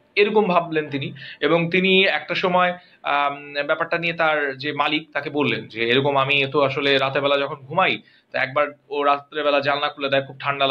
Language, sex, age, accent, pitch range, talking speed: Bengali, male, 30-49, native, 140-180 Hz, 185 wpm